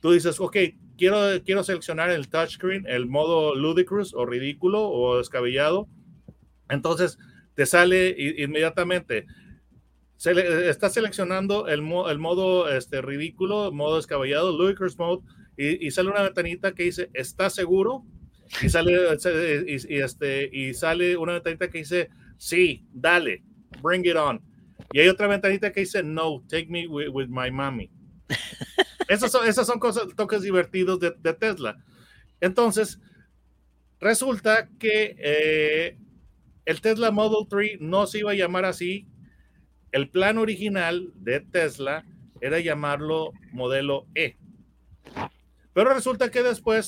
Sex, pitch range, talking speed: male, 145-195 Hz, 135 wpm